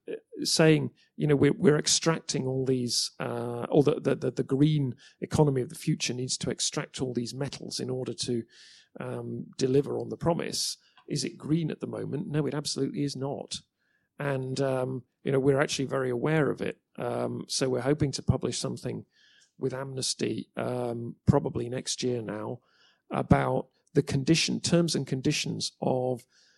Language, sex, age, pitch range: English, male, 40-59, 125-150 Hz